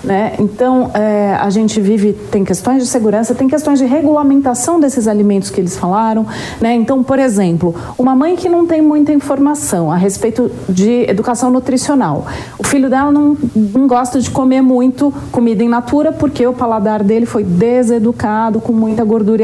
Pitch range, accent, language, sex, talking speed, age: 215-255 Hz, Brazilian, Portuguese, female, 175 wpm, 40-59